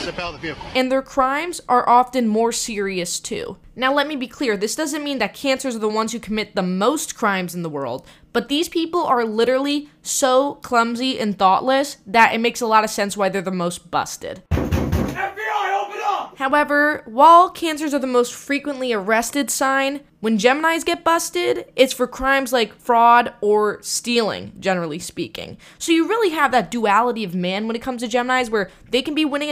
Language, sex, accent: English, female, American